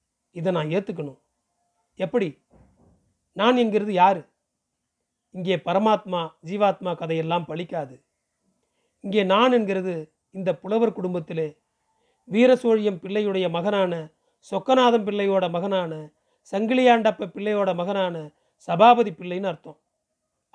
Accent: native